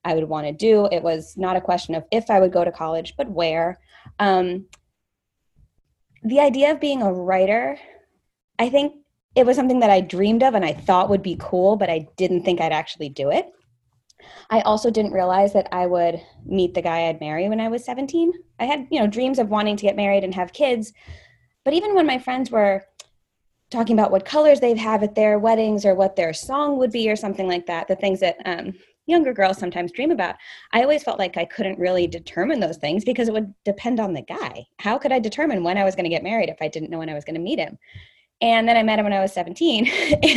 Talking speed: 235 wpm